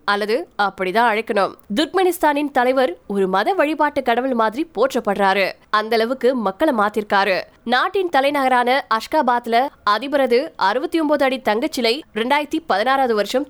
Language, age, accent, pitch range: Tamil, 20-39, native, 210-285 Hz